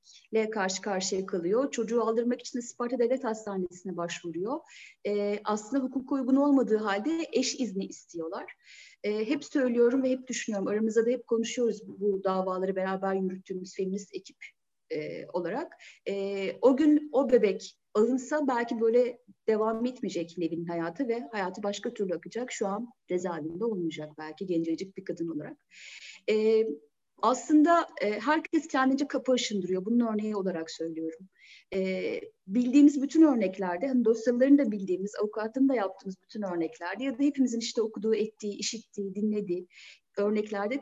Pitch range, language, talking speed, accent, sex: 195-260 Hz, Turkish, 145 wpm, native, female